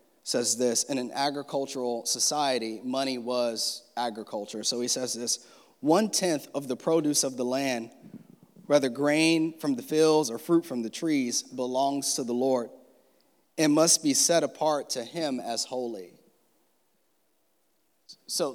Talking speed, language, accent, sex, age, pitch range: 140 wpm, English, American, male, 30-49, 130-170 Hz